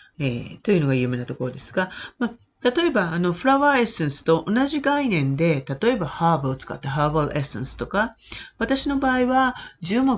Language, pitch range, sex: Japanese, 135-205 Hz, female